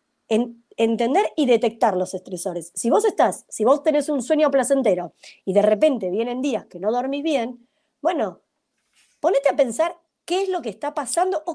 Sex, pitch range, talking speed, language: female, 210-305 Hz, 180 wpm, Spanish